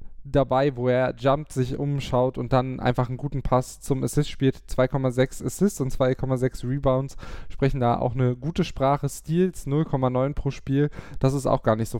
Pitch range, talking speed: 120-135 Hz, 180 wpm